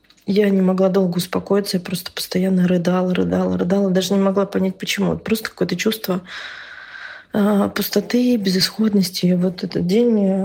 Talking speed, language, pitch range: 145 wpm, Russian, 175-205 Hz